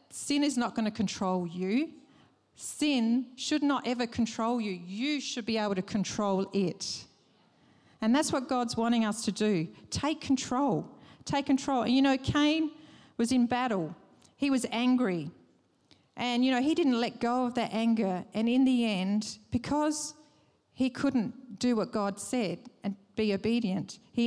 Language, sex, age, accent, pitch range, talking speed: English, female, 40-59, Australian, 195-245 Hz, 165 wpm